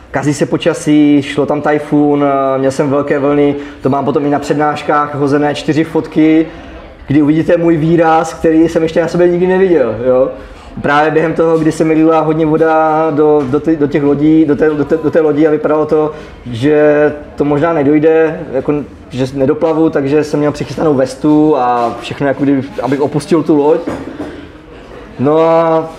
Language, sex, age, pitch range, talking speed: Czech, male, 20-39, 145-165 Hz, 175 wpm